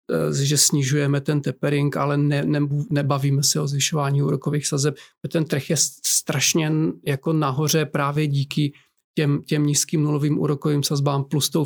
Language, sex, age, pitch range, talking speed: Czech, male, 40-59, 140-155 Hz, 150 wpm